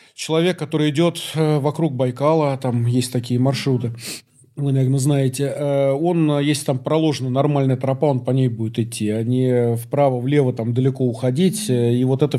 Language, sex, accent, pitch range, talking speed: Russian, male, native, 120-145 Hz, 150 wpm